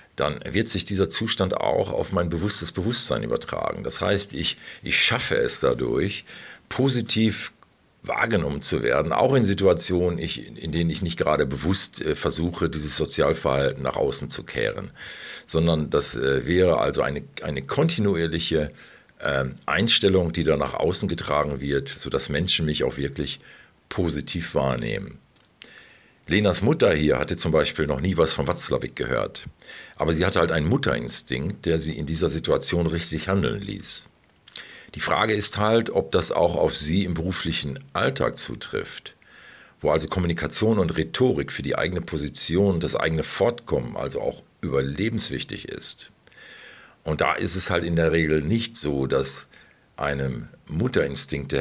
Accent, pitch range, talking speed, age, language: German, 80-95 Hz, 150 wpm, 50-69, German